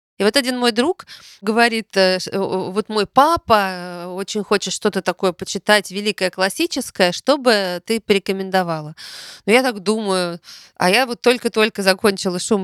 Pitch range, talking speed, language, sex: 175-235 Hz, 140 wpm, Russian, female